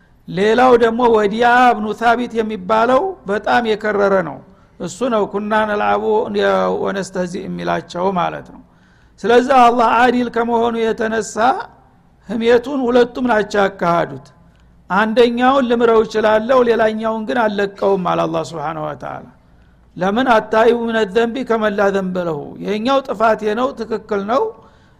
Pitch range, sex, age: 200-235 Hz, male, 60-79